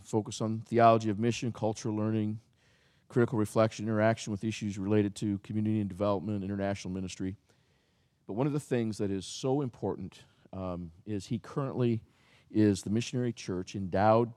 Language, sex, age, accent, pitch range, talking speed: English, male, 50-69, American, 90-115 Hz, 155 wpm